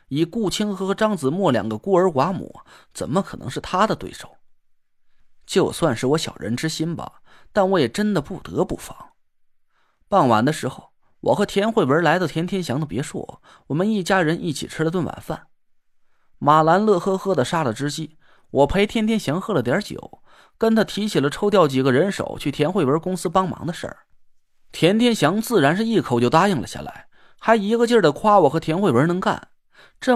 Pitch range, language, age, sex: 145-205 Hz, Chinese, 30-49, male